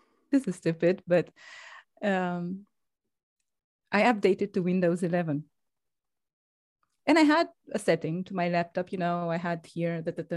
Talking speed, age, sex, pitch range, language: 135 wpm, 30-49, female, 170-230 Hz, Romanian